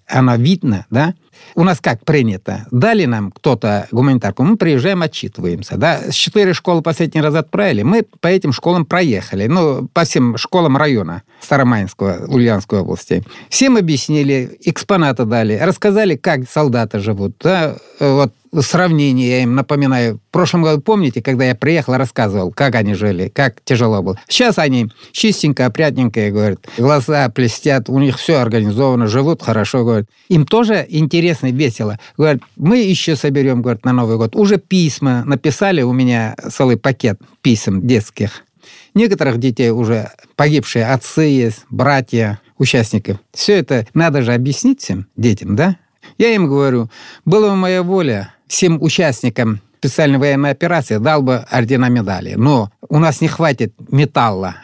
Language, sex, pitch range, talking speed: Russian, male, 115-160 Hz, 145 wpm